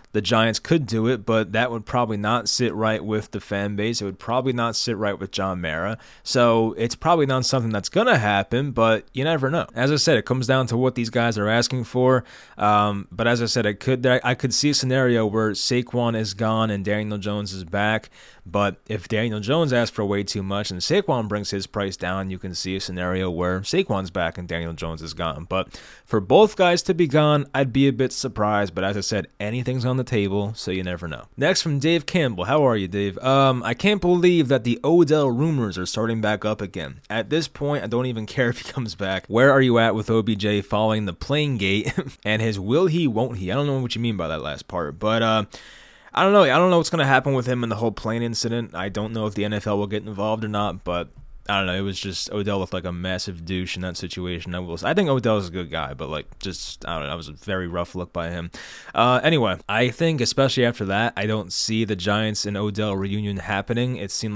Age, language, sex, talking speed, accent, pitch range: 20-39, English, male, 250 wpm, American, 100-125 Hz